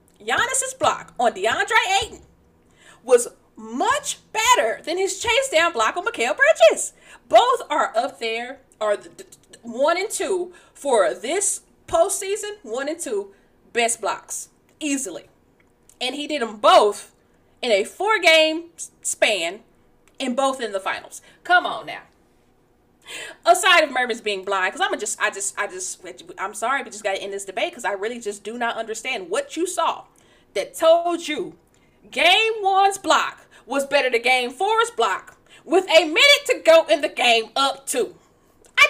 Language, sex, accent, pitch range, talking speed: English, female, American, 250-390 Hz, 160 wpm